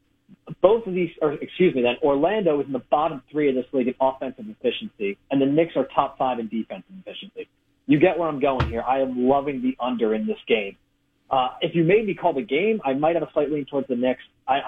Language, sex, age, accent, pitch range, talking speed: English, male, 40-59, American, 135-175 Hz, 245 wpm